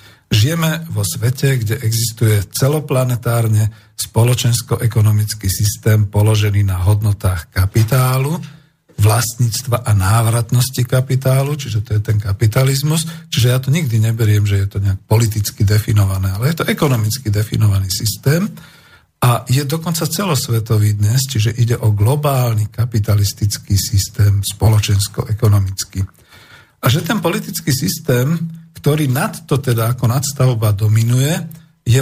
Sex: male